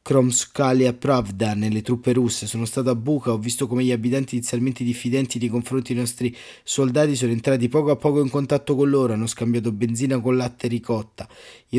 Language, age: Italian, 20-39